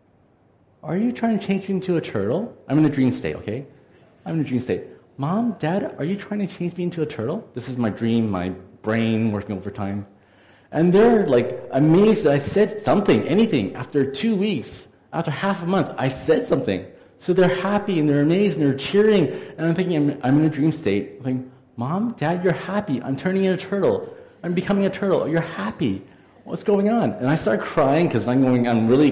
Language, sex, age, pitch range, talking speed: English, male, 30-49, 105-165 Hz, 215 wpm